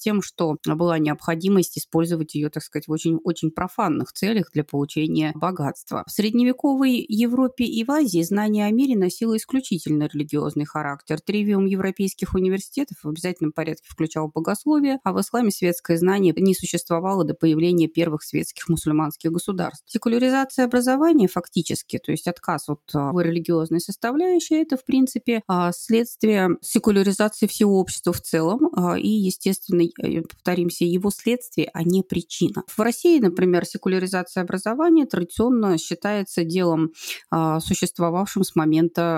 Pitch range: 165-215 Hz